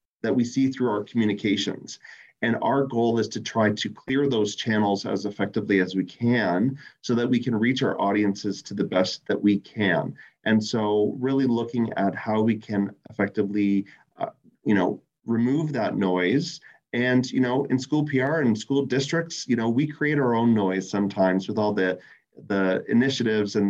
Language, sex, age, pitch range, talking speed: English, male, 30-49, 100-125 Hz, 180 wpm